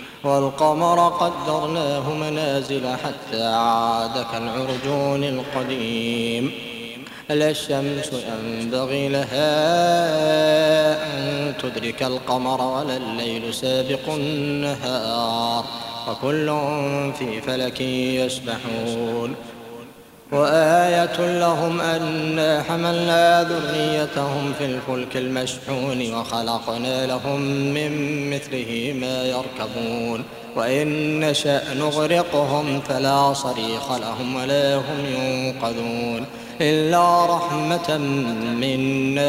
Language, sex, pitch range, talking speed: Arabic, male, 115-150 Hz, 70 wpm